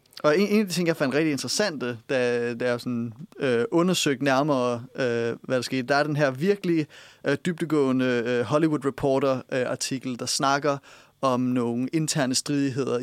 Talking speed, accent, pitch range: 175 wpm, native, 125-150 Hz